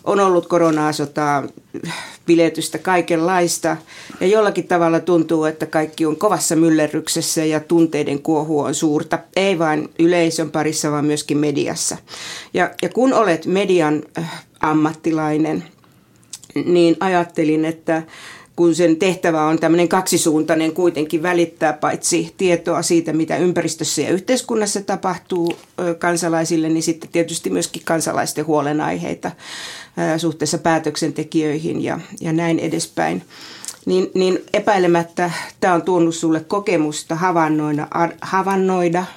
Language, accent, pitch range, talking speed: Finnish, native, 155-175 Hz, 110 wpm